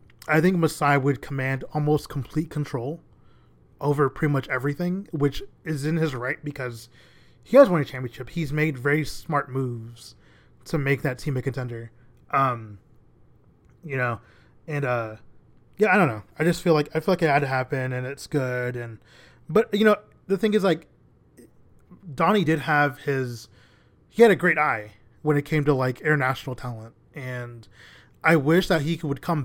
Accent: American